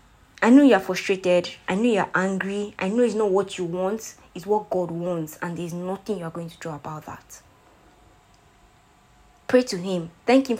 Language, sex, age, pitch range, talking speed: English, female, 20-39, 170-215 Hz, 185 wpm